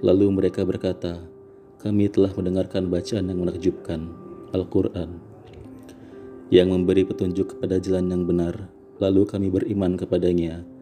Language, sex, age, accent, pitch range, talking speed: Indonesian, male, 30-49, native, 85-100 Hz, 115 wpm